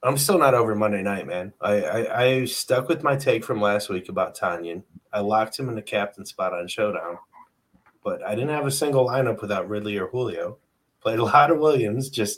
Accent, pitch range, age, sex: American, 90-130 Hz, 20-39, male